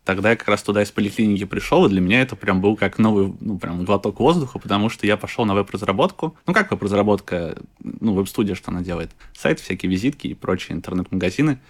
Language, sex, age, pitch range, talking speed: Russian, male, 20-39, 100-115 Hz, 205 wpm